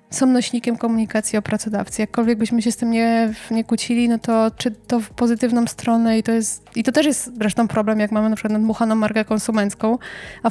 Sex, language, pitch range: female, Polish, 210-230 Hz